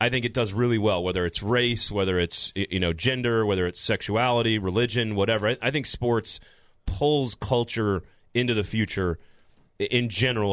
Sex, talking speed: male, 170 wpm